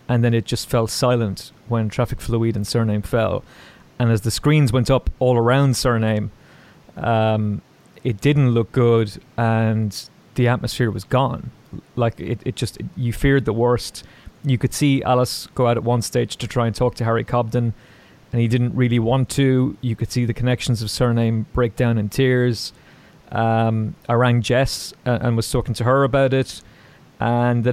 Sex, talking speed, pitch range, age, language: male, 185 wpm, 115-140 Hz, 30-49, English